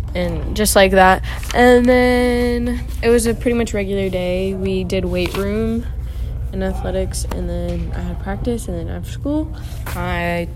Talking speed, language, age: 165 wpm, English, 10-29